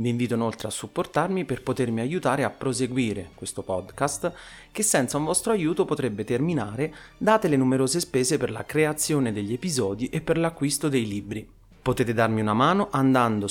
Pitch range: 110-155 Hz